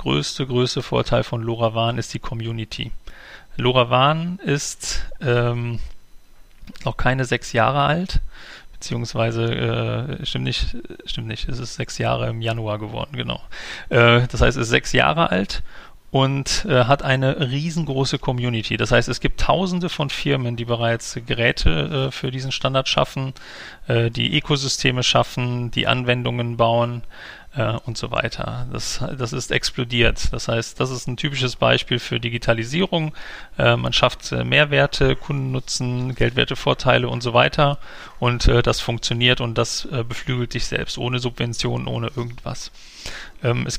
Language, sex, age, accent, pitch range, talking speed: German, male, 40-59, German, 115-135 Hz, 145 wpm